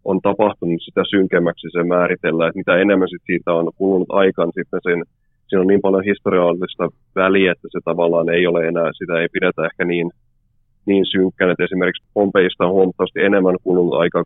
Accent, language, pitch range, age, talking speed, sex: native, Finnish, 85-100 Hz, 30-49, 175 wpm, male